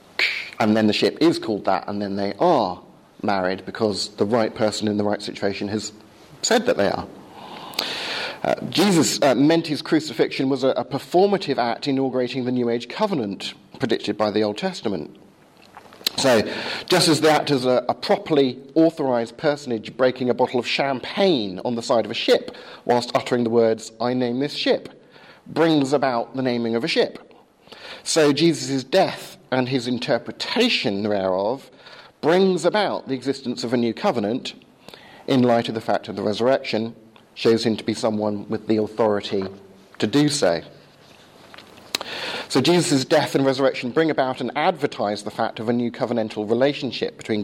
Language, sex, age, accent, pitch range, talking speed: English, male, 40-59, British, 105-135 Hz, 170 wpm